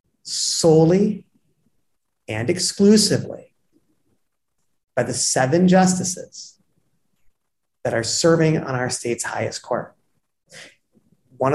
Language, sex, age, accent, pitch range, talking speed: English, male, 30-49, American, 125-175 Hz, 85 wpm